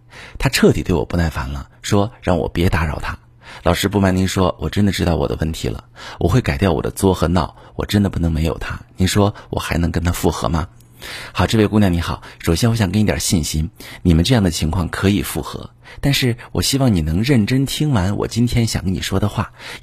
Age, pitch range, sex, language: 50-69, 85-120 Hz, male, Chinese